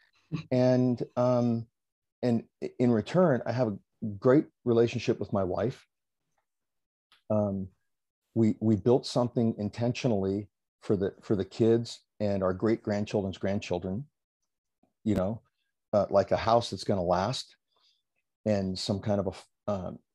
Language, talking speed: English, 135 wpm